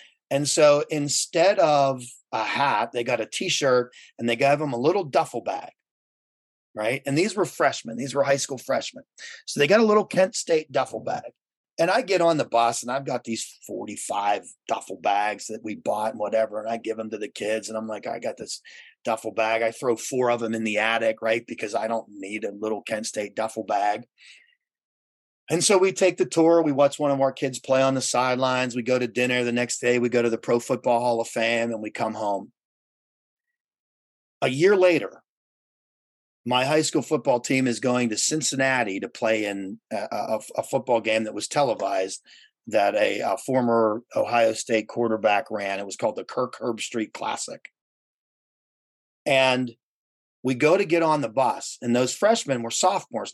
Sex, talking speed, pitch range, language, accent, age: male, 200 wpm, 110-140 Hz, English, American, 30-49